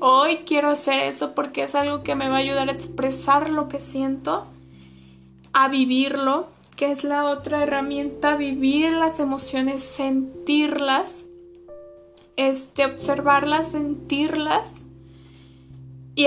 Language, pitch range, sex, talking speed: Spanish, 265-290 Hz, female, 120 wpm